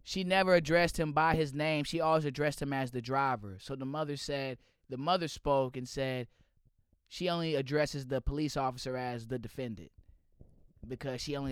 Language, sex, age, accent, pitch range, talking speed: English, male, 20-39, American, 115-160 Hz, 180 wpm